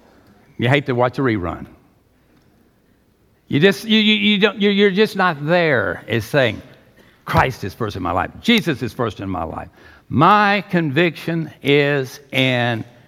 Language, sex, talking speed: English, male, 155 wpm